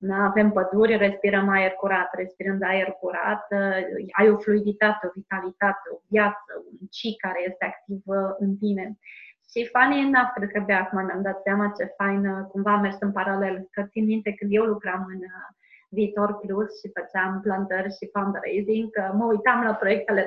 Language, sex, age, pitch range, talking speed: Romanian, female, 20-39, 195-230 Hz, 185 wpm